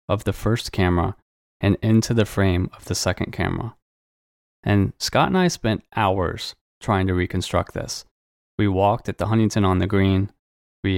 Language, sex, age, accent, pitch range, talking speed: English, male, 20-39, American, 95-115 Hz, 170 wpm